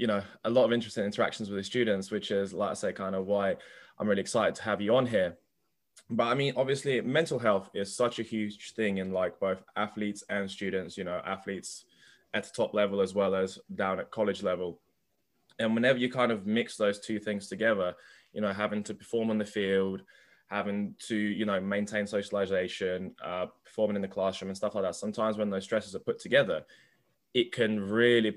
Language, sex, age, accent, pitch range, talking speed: English, male, 20-39, British, 100-115 Hz, 210 wpm